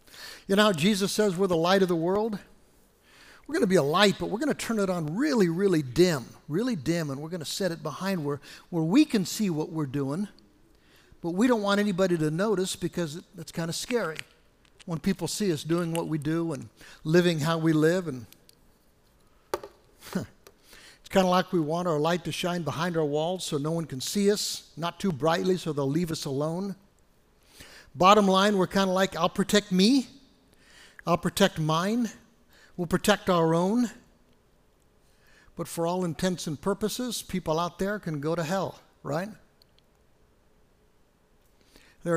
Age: 60-79